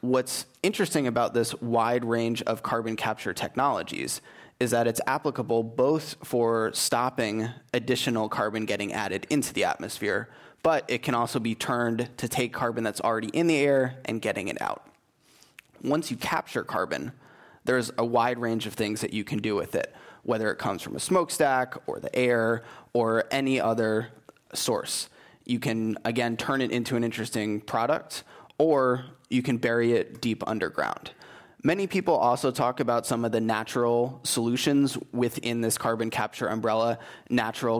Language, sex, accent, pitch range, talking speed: English, male, American, 115-130 Hz, 165 wpm